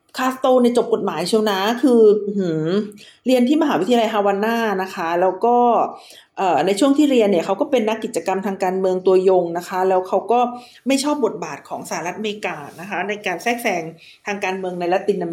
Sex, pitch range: female, 185-255 Hz